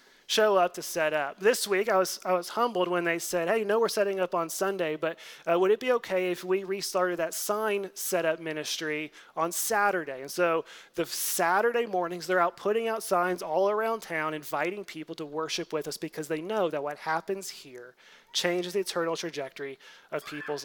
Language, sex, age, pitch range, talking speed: English, male, 30-49, 155-195 Hz, 205 wpm